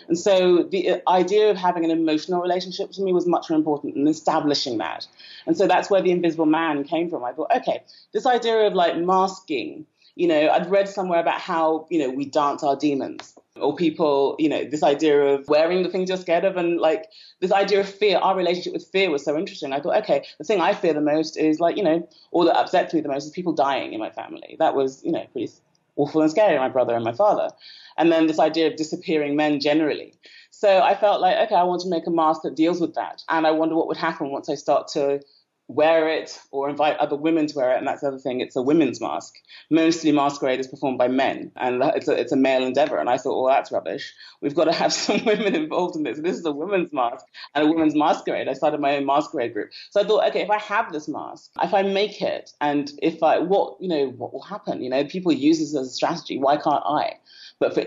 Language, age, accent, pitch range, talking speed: English, 30-49, British, 150-190 Hz, 250 wpm